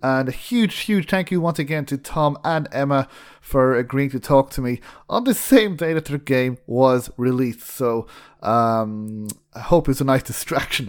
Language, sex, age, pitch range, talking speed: English, male, 30-49, 130-175 Hz, 195 wpm